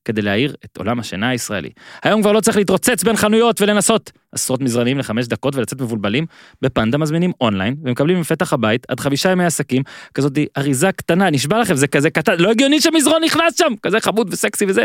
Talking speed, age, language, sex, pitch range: 190 wpm, 30-49, Hebrew, male, 140-200 Hz